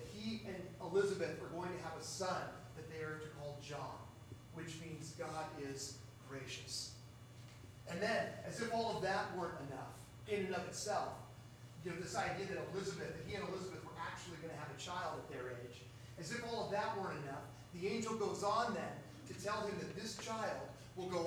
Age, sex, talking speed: 40-59, male, 205 wpm